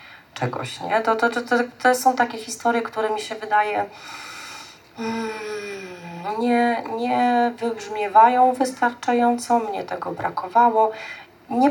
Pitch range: 180-225 Hz